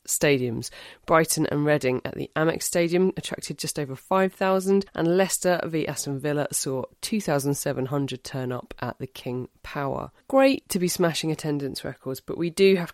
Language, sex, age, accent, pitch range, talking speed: English, female, 30-49, British, 140-180 Hz, 160 wpm